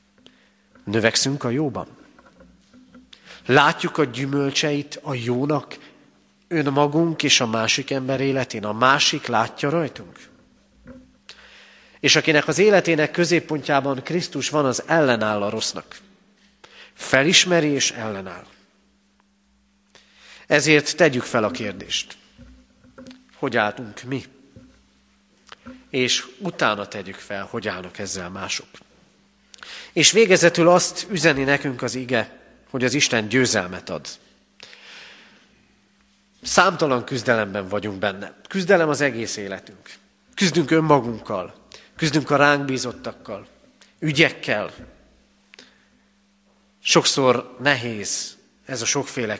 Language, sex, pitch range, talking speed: Hungarian, male, 115-165 Hz, 95 wpm